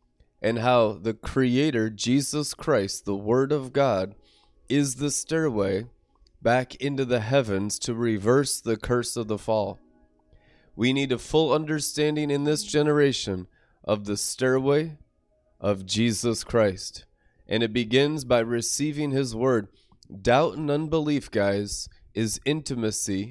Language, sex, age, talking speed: English, male, 20-39, 130 wpm